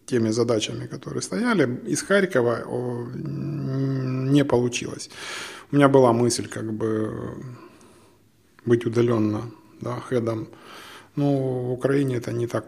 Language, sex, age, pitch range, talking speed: Ukrainian, male, 20-39, 115-145 Hz, 120 wpm